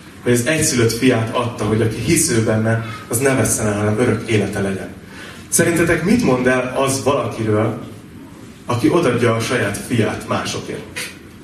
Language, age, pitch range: Hungarian, 30-49, 110-150 Hz